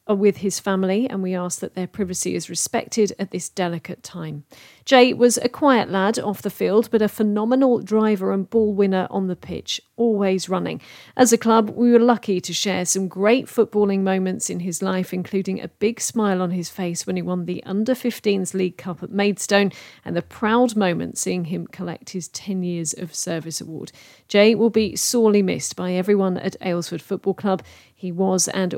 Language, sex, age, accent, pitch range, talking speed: English, female, 40-59, British, 180-215 Hz, 195 wpm